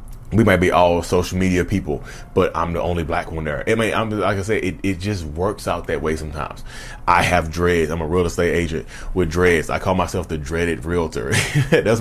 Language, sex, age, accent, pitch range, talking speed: English, male, 30-49, American, 85-110 Hz, 225 wpm